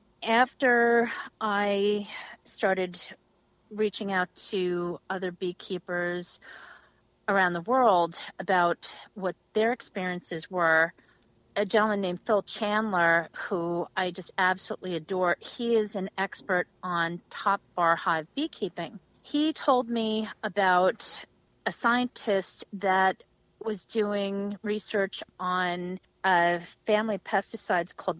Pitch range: 175-210 Hz